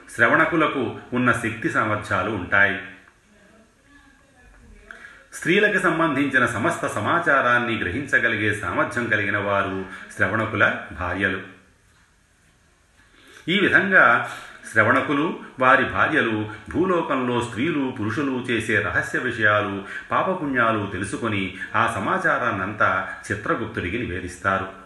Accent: native